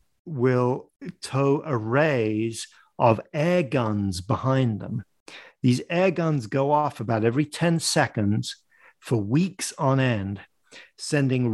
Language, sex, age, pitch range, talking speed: English, male, 50-69, 105-140 Hz, 115 wpm